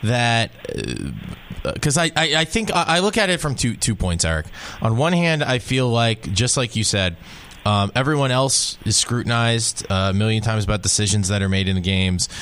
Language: English